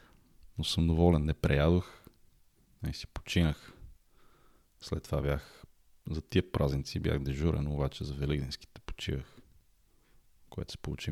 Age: 30-49